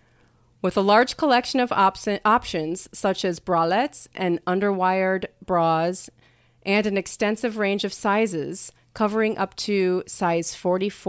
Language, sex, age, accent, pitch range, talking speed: English, female, 30-49, American, 175-225 Hz, 120 wpm